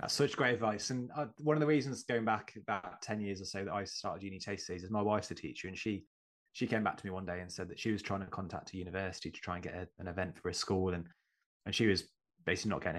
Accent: British